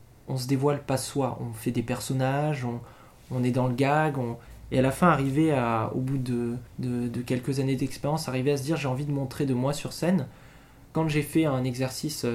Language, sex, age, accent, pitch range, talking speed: English, male, 20-39, French, 125-150 Hz, 225 wpm